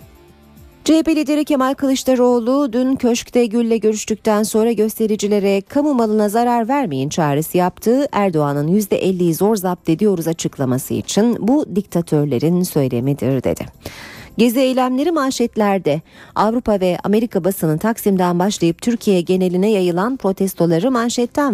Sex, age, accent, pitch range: female, 40-59, native, 170-235 Hz